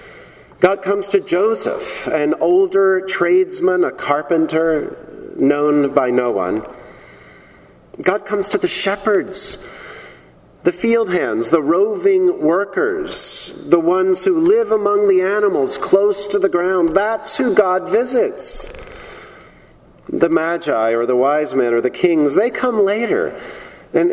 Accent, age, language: American, 40-59, English